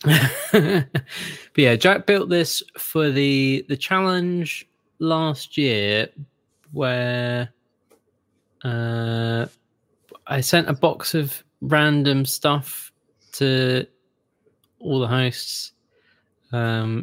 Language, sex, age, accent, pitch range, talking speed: English, male, 20-39, British, 115-150 Hz, 90 wpm